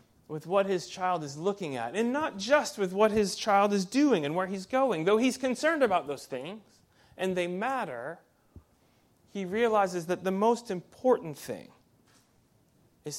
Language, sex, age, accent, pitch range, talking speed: English, male, 30-49, American, 145-205 Hz, 170 wpm